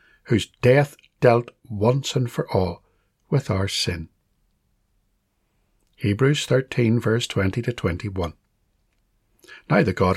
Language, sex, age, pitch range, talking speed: English, male, 60-79, 95-130 Hz, 110 wpm